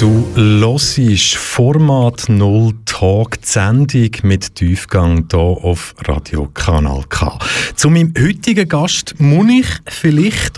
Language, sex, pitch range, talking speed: German, male, 100-140 Hz, 110 wpm